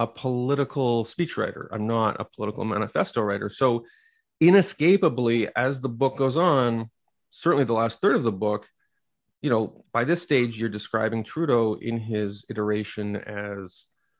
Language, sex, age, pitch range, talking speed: English, male, 30-49, 105-130 Hz, 150 wpm